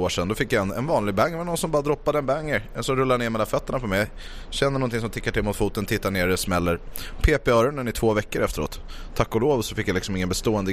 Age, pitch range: 20-39, 95-125 Hz